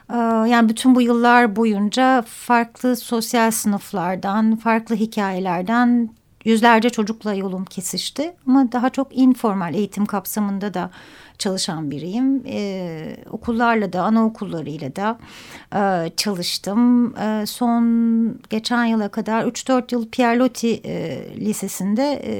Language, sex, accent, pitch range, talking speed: Turkish, female, native, 210-260 Hz, 100 wpm